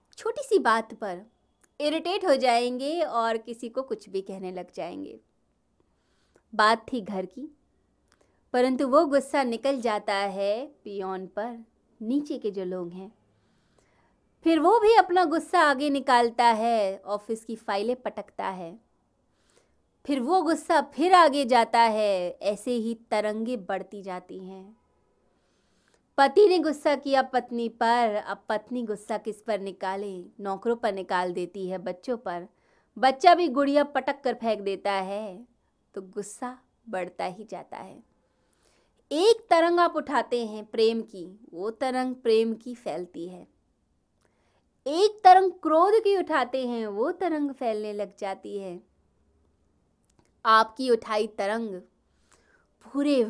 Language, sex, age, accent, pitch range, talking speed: Hindi, female, 20-39, native, 200-275 Hz, 135 wpm